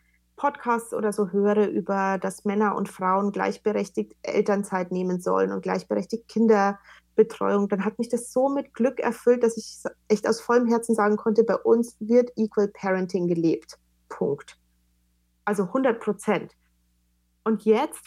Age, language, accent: 30-49, German, German